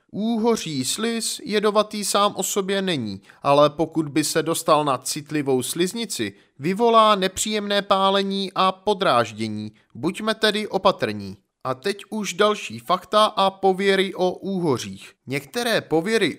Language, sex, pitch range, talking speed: Czech, male, 155-210 Hz, 125 wpm